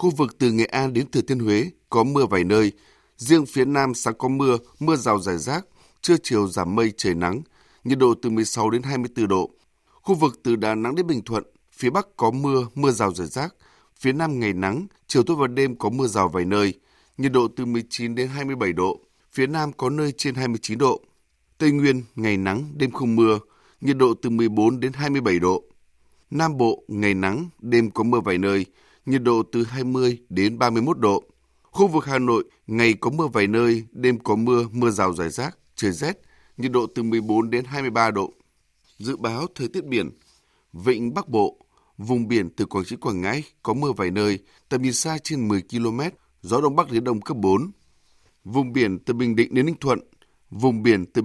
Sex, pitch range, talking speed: male, 105-135 Hz, 205 wpm